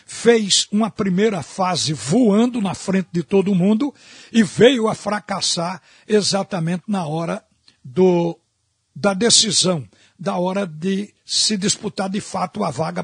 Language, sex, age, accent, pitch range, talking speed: Portuguese, male, 60-79, Brazilian, 185-235 Hz, 135 wpm